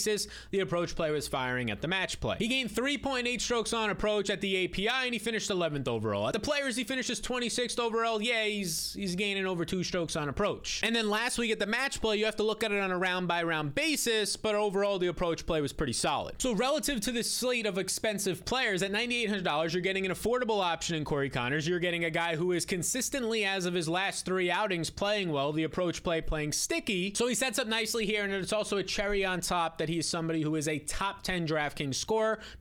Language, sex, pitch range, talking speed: English, male, 165-225 Hz, 240 wpm